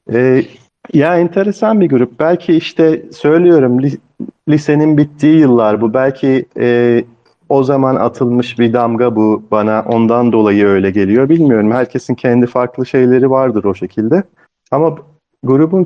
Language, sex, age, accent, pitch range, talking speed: Turkish, male, 40-59, native, 120-150 Hz, 135 wpm